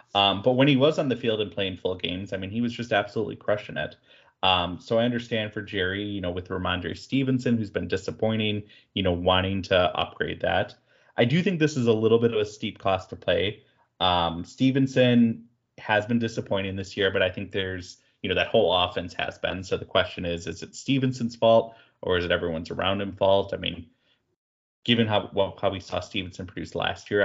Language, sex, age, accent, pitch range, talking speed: English, male, 20-39, American, 95-120 Hz, 220 wpm